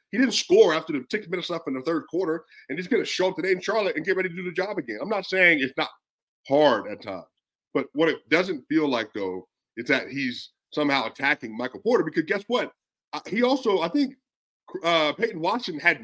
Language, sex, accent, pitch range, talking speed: English, male, American, 150-235 Hz, 230 wpm